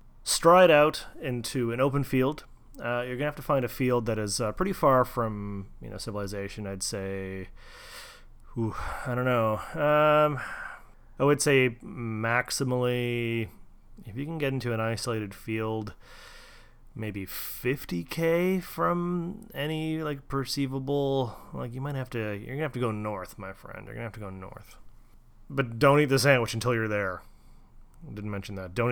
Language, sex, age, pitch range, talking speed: English, male, 30-49, 105-140 Hz, 165 wpm